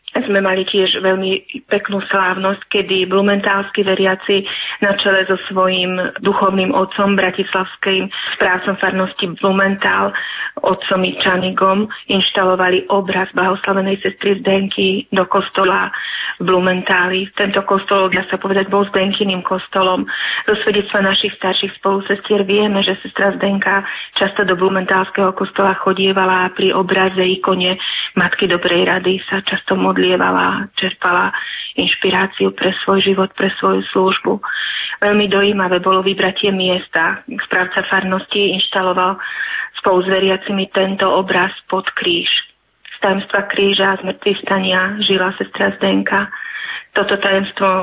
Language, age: Slovak, 30-49